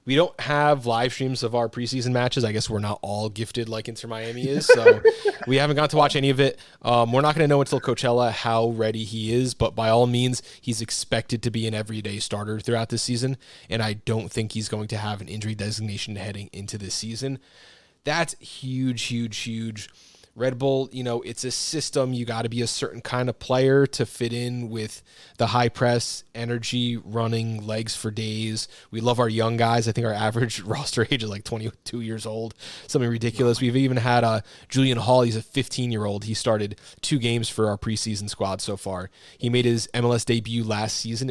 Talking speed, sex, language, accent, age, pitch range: 210 wpm, male, English, American, 20-39, 110-125 Hz